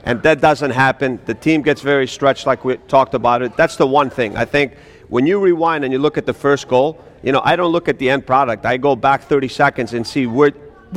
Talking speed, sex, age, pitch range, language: 265 wpm, male, 40-59, 135-180 Hz, English